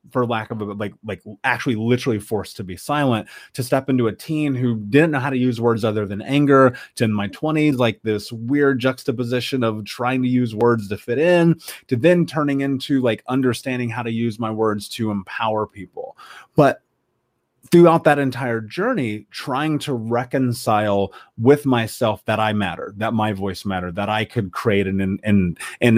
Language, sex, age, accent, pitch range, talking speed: English, male, 30-49, American, 105-135 Hz, 190 wpm